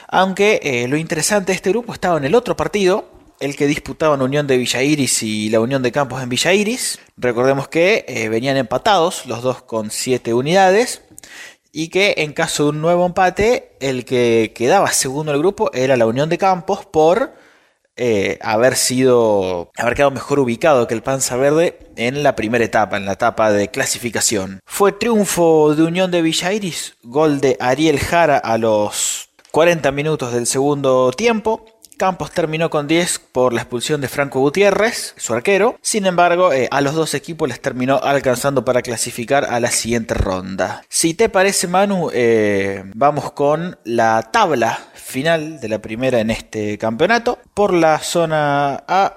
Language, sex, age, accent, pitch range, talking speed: Spanish, male, 20-39, Argentinian, 125-175 Hz, 175 wpm